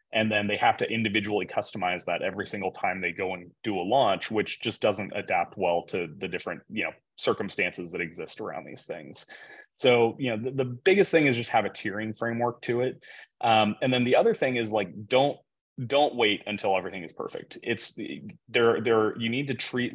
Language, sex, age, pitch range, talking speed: English, male, 20-39, 100-120 Hz, 215 wpm